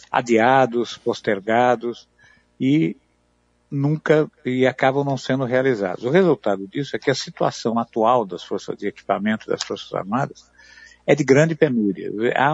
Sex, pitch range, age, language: male, 105-135 Hz, 50-69, Portuguese